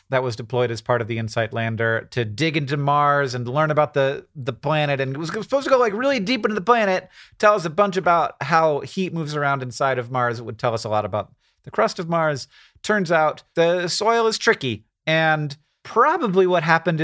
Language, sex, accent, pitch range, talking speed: English, male, American, 130-175 Hz, 225 wpm